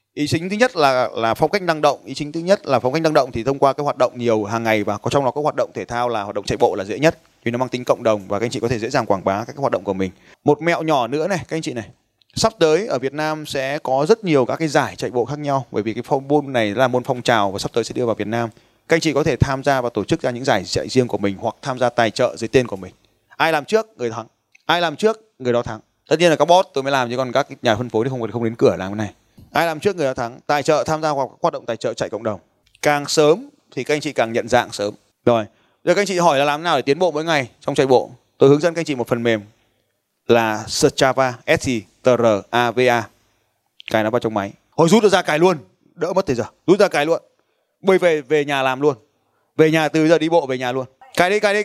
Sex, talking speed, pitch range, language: male, 310 wpm, 120-165 Hz, Vietnamese